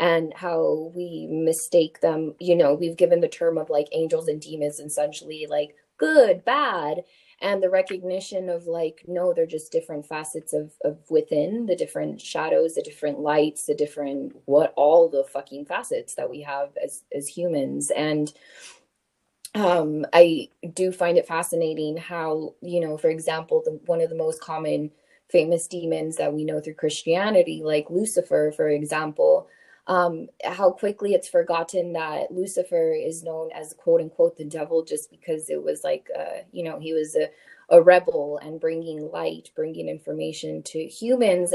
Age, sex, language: 20-39, female, English